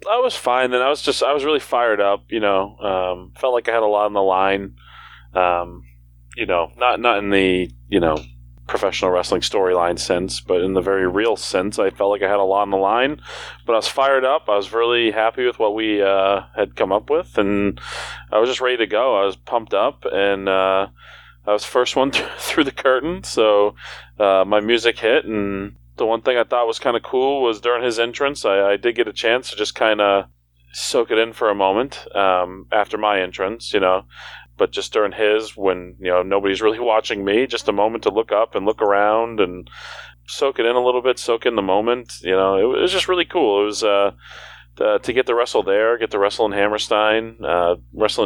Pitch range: 95-115 Hz